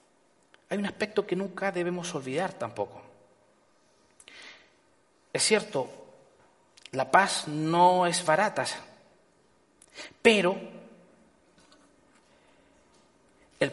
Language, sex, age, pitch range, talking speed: Spanish, male, 40-59, 165-235 Hz, 75 wpm